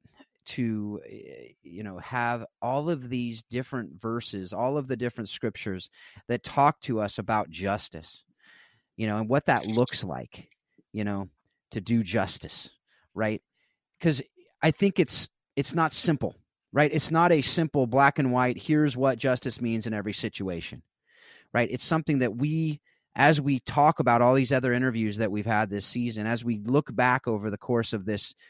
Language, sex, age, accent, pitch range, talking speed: English, male, 30-49, American, 110-135 Hz, 175 wpm